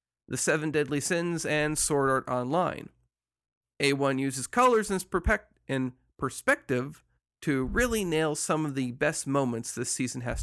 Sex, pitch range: male, 125-170 Hz